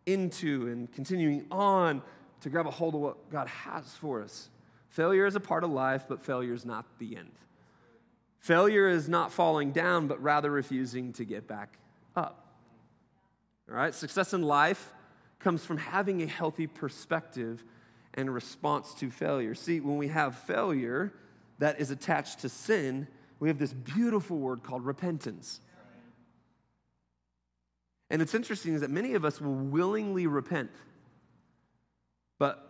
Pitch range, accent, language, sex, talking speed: 120-165 Hz, American, English, male, 150 wpm